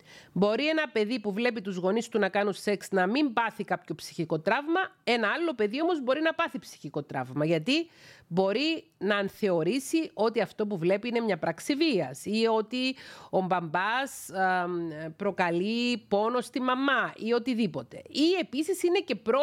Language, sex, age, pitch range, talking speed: Greek, female, 40-59, 185-255 Hz, 115 wpm